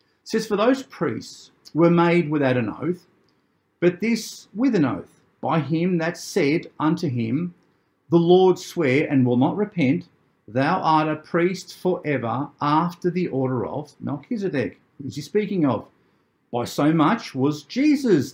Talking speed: 155 wpm